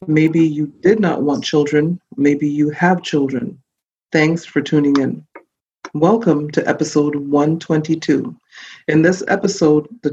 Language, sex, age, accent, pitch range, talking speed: English, female, 40-59, American, 150-175 Hz, 130 wpm